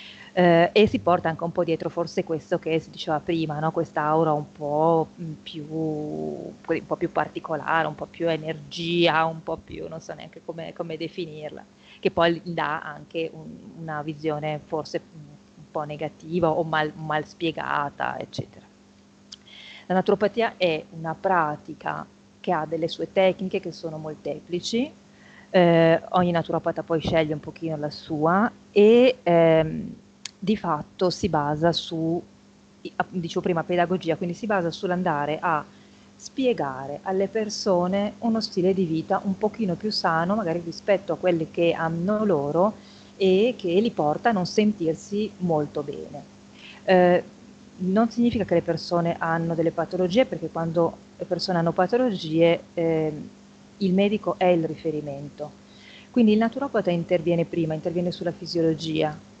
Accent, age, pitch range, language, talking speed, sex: native, 30-49, 160-190 Hz, Italian, 145 wpm, female